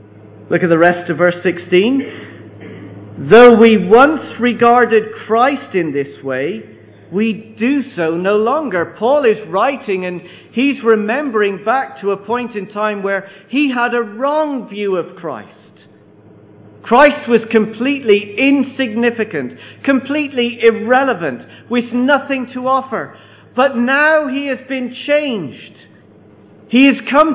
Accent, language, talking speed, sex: British, English, 130 wpm, male